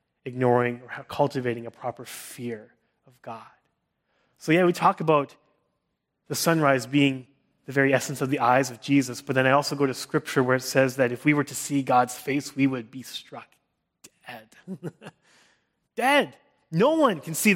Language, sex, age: English, male, 30-49